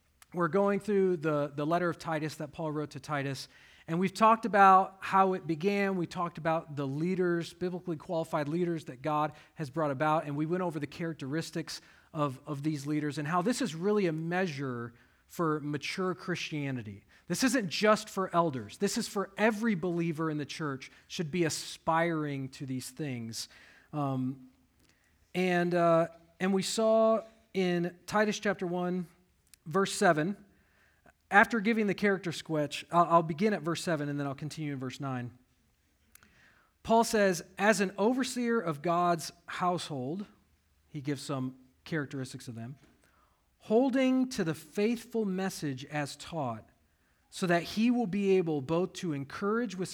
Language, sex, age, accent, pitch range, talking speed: English, male, 40-59, American, 145-190 Hz, 160 wpm